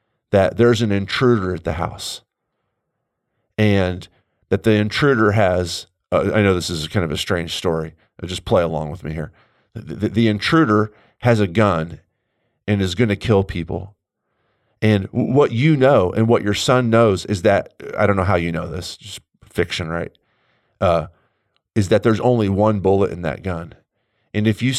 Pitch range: 90-110 Hz